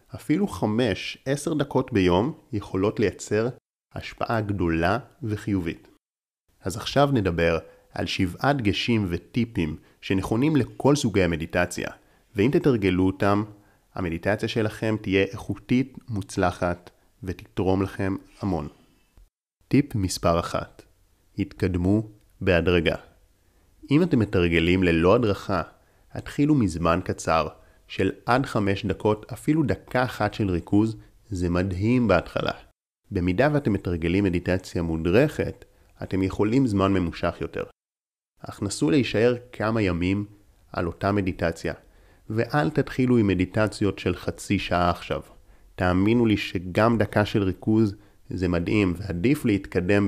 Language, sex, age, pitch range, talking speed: Hebrew, male, 30-49, 90-110 Hz, 110 wpm